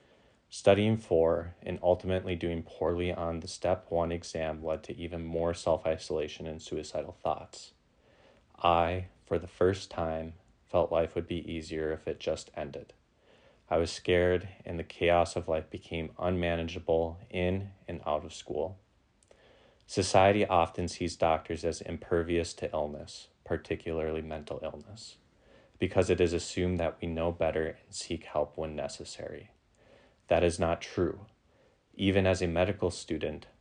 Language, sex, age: English, male, 20-39